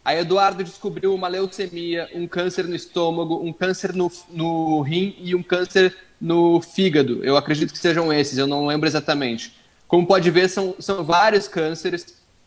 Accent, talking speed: Brazilian, 170 wpm